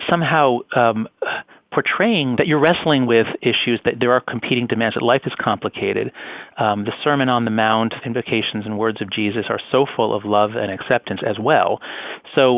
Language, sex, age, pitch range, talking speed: English, male, 40-59, 110-140 Hz, 180 wpm